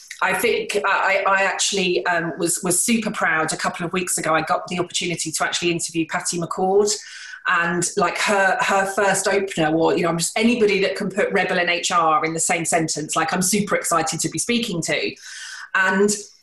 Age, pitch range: 30-49, 170-205 Hz